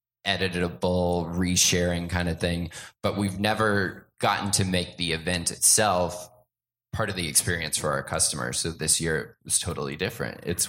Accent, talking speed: American, 155 wpm